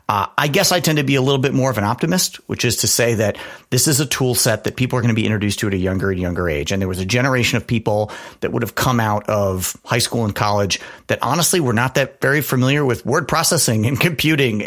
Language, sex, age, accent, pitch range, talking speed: English, male, 40-59, American, 105-130 Hz, 275 wpm